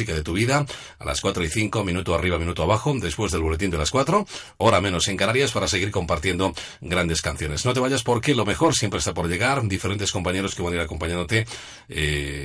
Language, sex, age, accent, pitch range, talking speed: Spanish, male, 40-59, Spanish, 80-105 Hz, 215 wpm